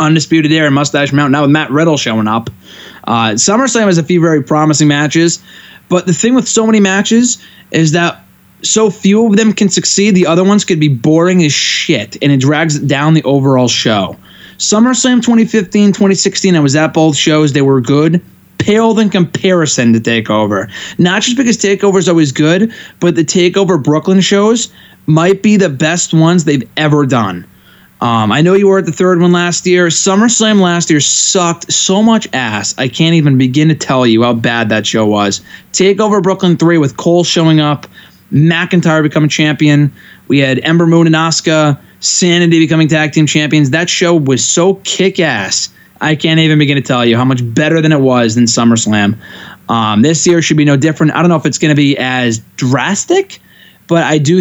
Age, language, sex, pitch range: 20-39, English, male, 140-180 Hz